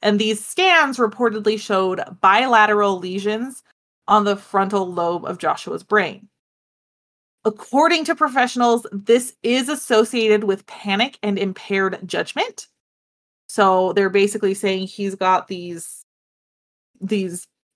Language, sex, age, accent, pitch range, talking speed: English, female, 30-49, American, 190-230 Hz, 110 wpm